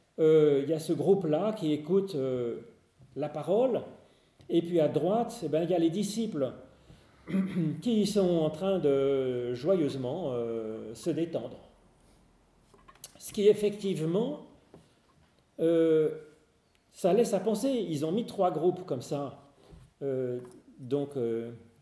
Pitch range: 130-185 Hz